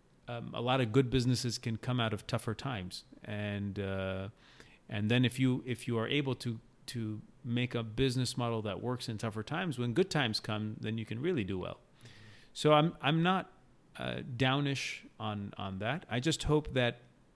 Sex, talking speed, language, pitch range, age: male, 195 wpm, English, 105-130 Hz, 40-59